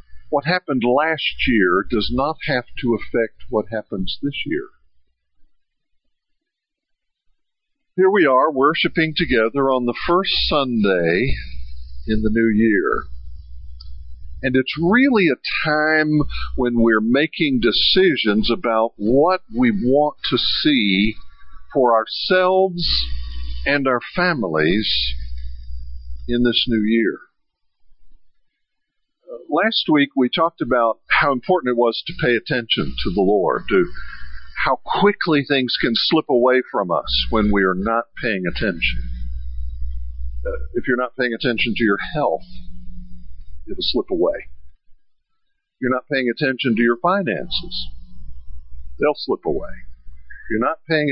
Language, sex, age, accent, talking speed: English, male, 50-69, American, 125 wpm